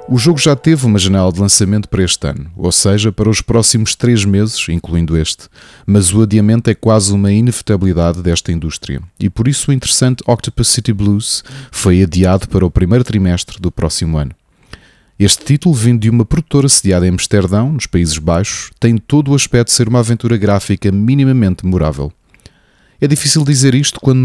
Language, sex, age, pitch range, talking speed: Portuguese, male, 30-49, 90-125 Hz, 185 wpm